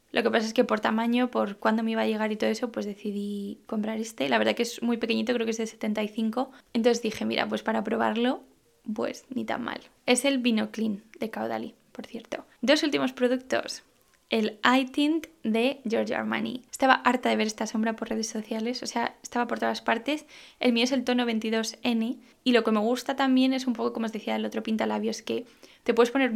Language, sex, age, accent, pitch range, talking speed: Spanish, female, 10-29, Spanish, 220-250 Hz, 225 wpm